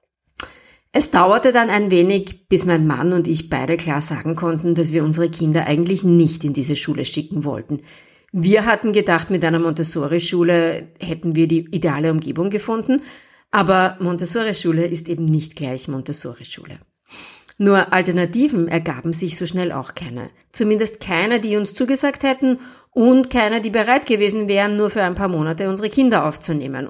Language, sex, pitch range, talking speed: English, female, 165-210 Hz, 160 wpm